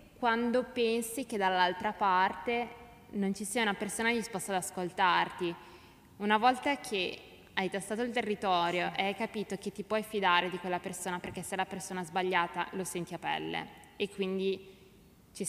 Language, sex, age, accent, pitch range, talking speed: Italian, female, 20-39, native, 175-200 Hz, 165 wpm